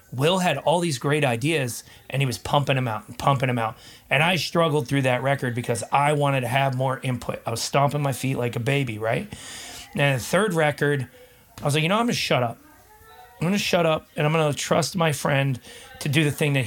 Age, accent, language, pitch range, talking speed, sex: 30-49, American, English, 125-155 Hz, 240 wpm, male